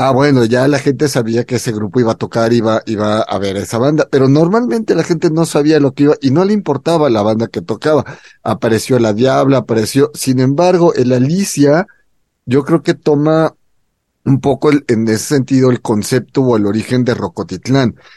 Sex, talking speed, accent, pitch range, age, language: male, 200 wpm, Mexican, 125-160 Hz, 40-59, Spanish